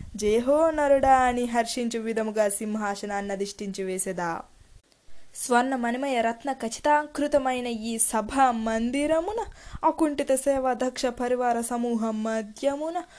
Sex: female